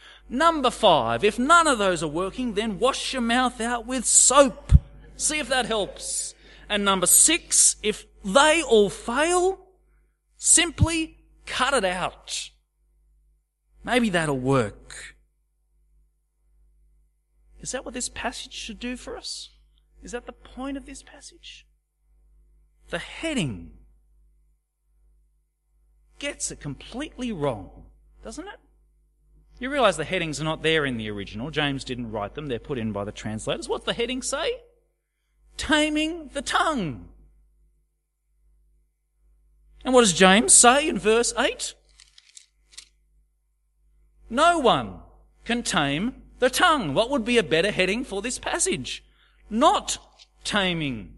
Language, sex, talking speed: English, male, 130 wpm